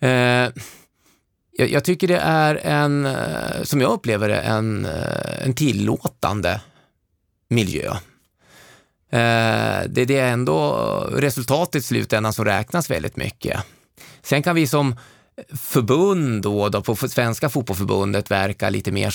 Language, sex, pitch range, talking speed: Swedish, male, 105-140 Hz, 110 wpm